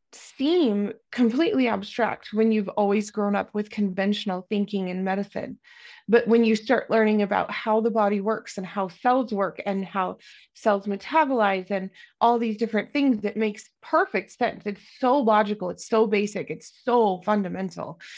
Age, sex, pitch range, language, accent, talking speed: 30-49, female, 205-250 Hz, English, American, 160 wpm